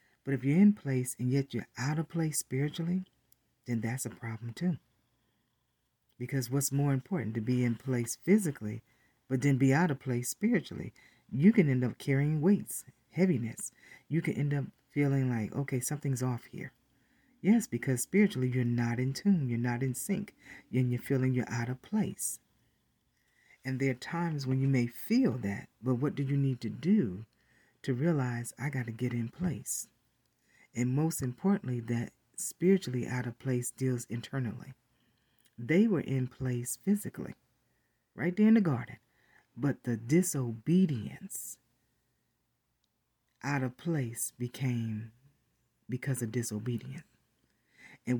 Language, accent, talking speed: English, American, 155 wpm